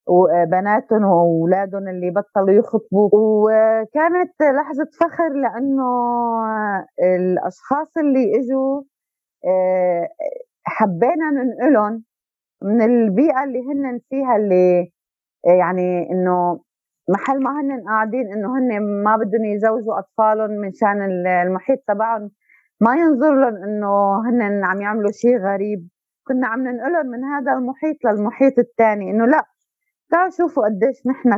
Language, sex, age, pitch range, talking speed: Arabic, female, 30-49, 185-255 Hz, 115 wpm